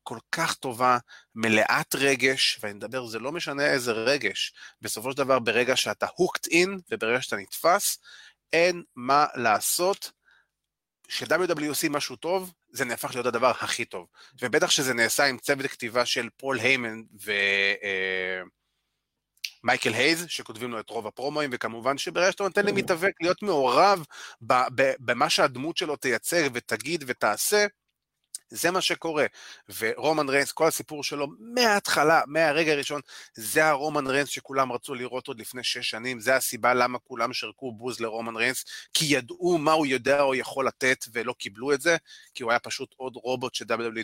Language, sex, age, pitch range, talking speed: Hebrew, male, 30-49, 120-155 Hz, 155 wpm